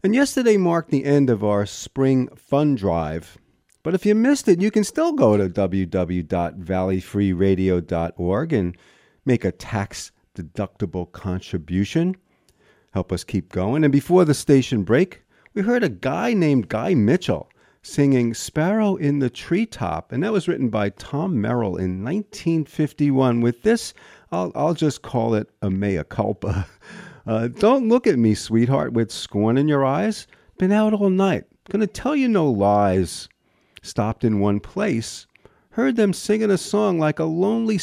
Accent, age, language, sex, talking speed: American, 40-59, English, male, 155 wpm